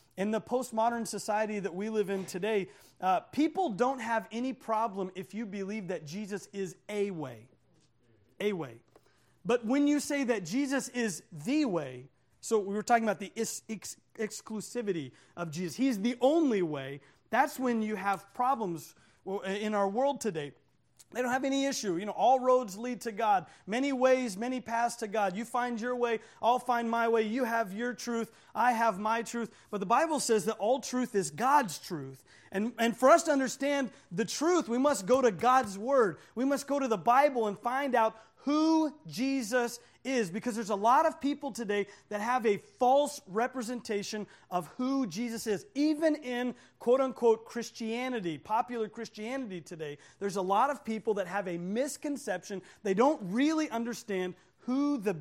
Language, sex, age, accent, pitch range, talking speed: English, male, 30-49, American, 200-255 Hz, 180 wpm